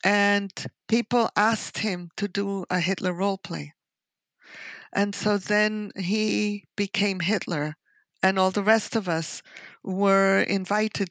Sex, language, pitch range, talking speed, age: female, English, 195-240 Hz, 130 wpm, 50-69